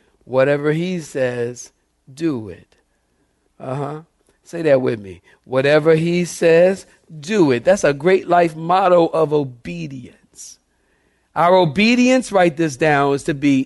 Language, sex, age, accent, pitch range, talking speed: English, male, 50-69, American, 110-155 Hz, 135 wpm